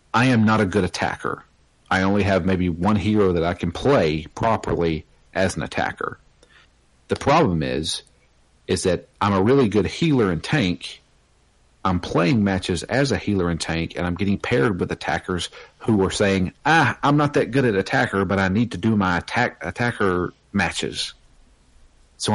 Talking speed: 175 wpm